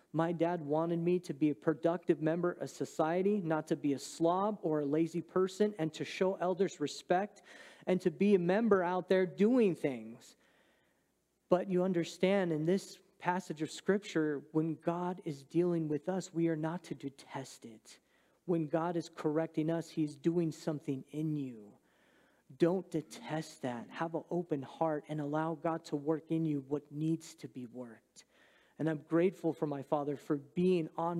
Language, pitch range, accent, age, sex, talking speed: English, 155-185 Hz, American, 40-59, male, 175 wpm